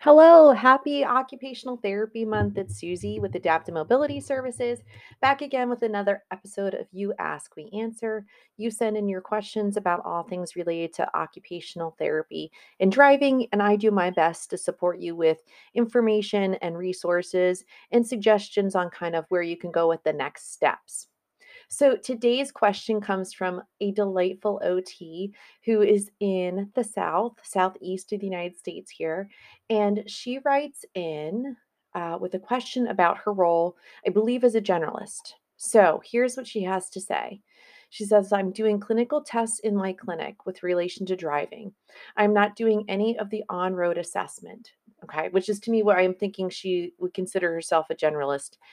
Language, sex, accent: English, female, American